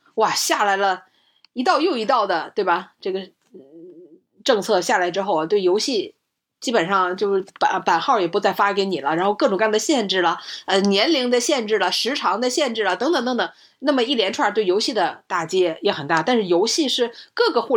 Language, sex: Chinese, female